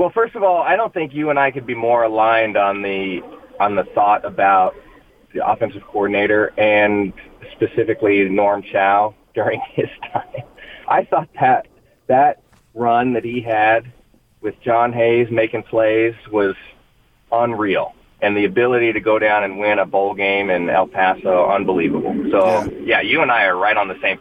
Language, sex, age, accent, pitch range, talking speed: English, male, 30-49, American, 110-145 Hz, 175 wpm